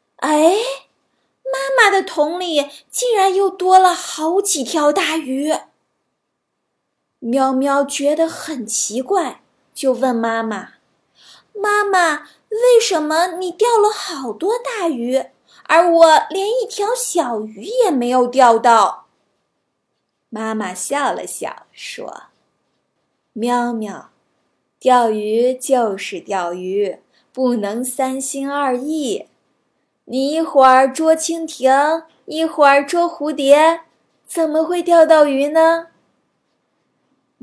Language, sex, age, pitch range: Chinese, female, 20-39, 240-335 Hz